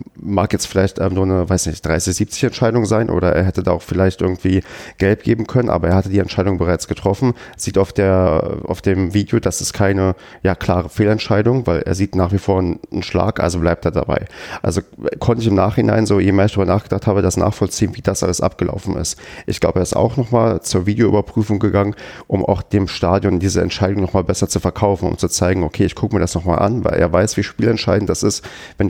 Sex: male